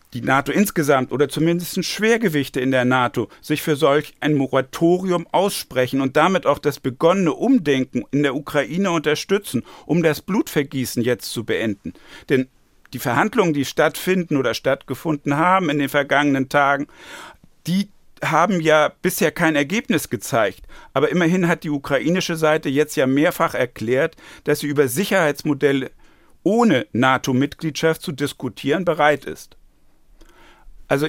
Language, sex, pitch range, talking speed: German, male, 140-165 Hz, 135 wpm